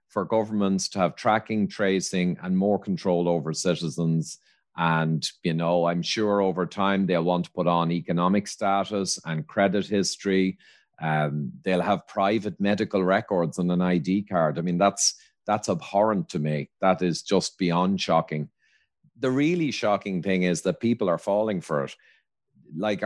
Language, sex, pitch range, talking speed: English, male, 85-110 Hz, 160 wpm